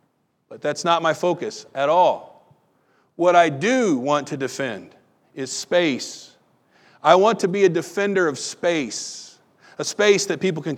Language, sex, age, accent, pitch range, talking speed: English, male, 50-69, American, 140-180 Hz, 155 wpm